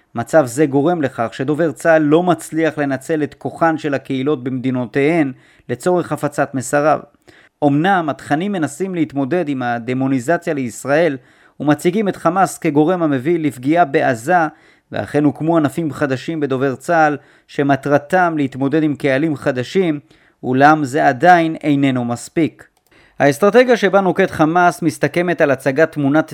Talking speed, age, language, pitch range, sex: 125 wpm, 30-49, Hebrew, 135-165 Hz, male